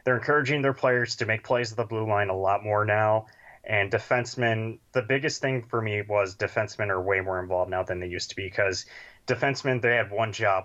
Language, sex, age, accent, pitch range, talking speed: English, male, 20-39, American, 95-120 Hz, 225 wpm